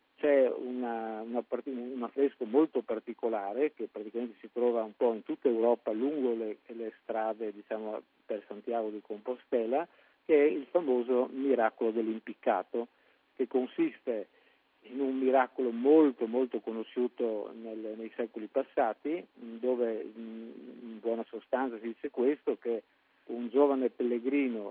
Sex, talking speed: male, 125 wpm